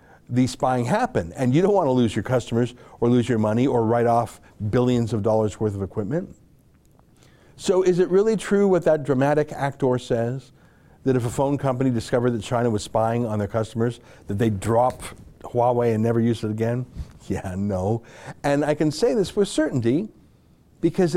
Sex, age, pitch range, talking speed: male, 60-79, 120-165 Hz, 185 wpm